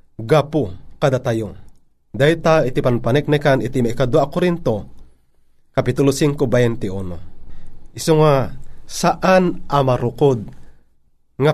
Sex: male